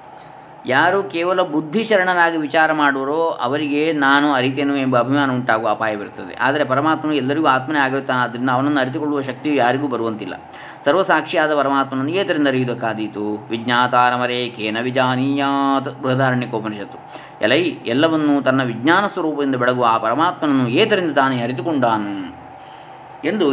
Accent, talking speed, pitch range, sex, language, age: native, 110 wpm, 125-150 Hz, male, Kannada, 20-39